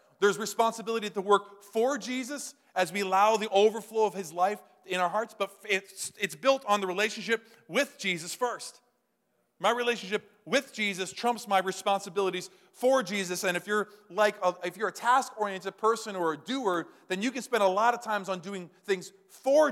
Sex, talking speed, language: male, 185 wpm, English